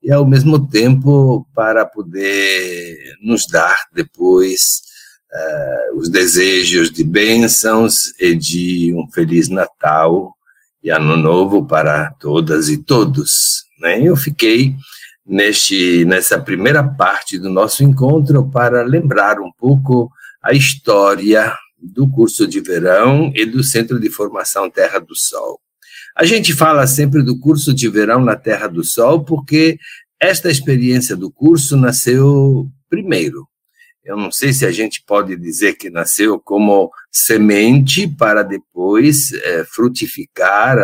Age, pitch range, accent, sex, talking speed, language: 60-79, 110-155 Hz, Brazilian, male, 125 wpm, Portuguese